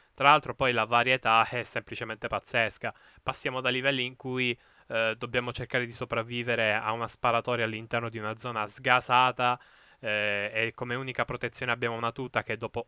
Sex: male